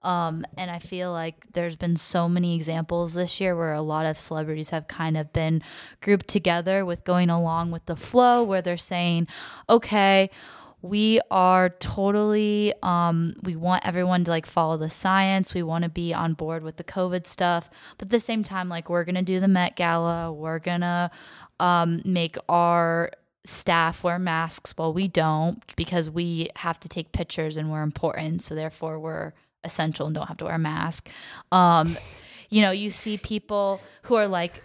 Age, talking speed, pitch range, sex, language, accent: 10-29, 185 wpm, 165-190 Hz, female, English, American